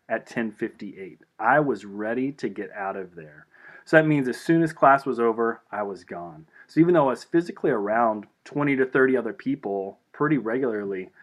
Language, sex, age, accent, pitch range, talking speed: English, male, 30-49, American, 100-125 Hz, 190 wpm